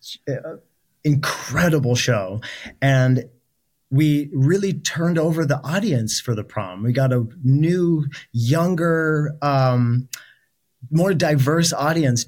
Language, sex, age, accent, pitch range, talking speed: English, male, 30-49, American, 125-145 Hz, 105 wpm